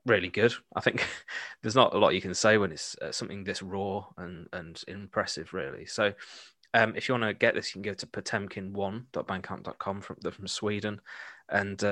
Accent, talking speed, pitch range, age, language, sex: British, 190 wpm, 95-110 Hz, 20-39, English, male